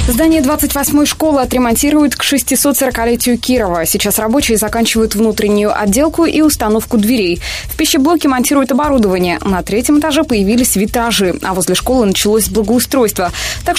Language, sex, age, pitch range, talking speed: Russian, female, 20-39, 205-270 Hz, 130 wpm